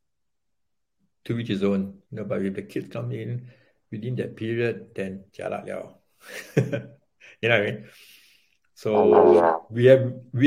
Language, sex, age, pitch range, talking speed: English, male, 60-79, 100-120 Hz, 130 wpm